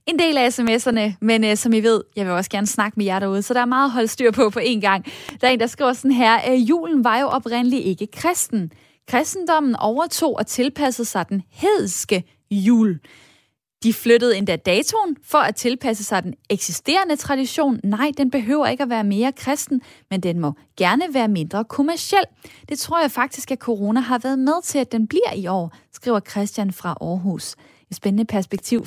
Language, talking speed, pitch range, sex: Danish, 200 wpm, 200-265 Hz, female